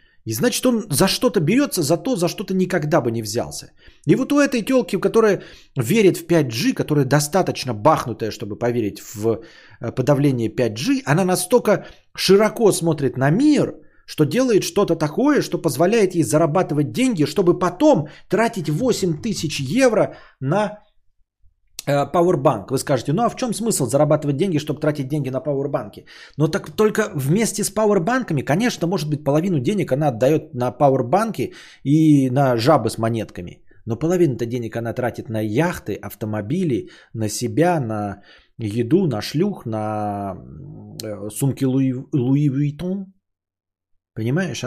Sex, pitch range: male, 120-185 Hz